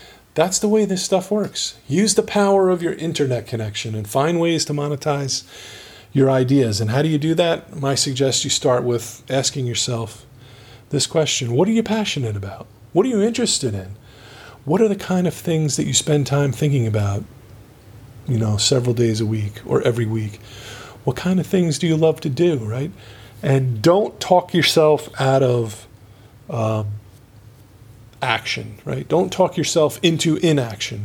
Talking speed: 175 wpm